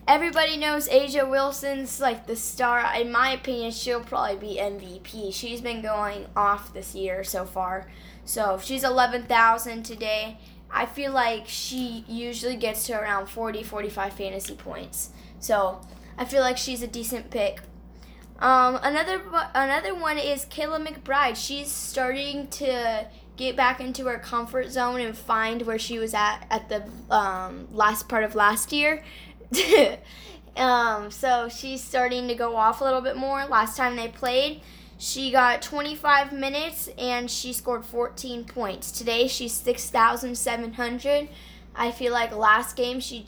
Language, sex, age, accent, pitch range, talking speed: English, female, 10-29, American, 220-260 Hz, 150 wpm